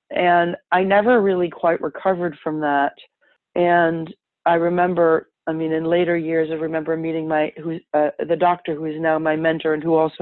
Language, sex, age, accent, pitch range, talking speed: English, female, 40-59, American, 155-180 Hz, 190 wpm